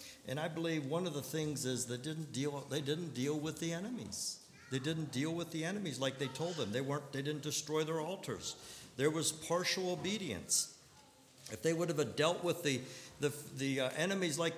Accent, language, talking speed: American, English, 200 wpm